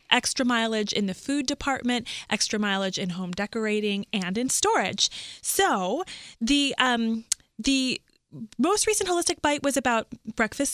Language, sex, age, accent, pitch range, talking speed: English, female, 20-39, American, 200-255 Hz, 140 wpm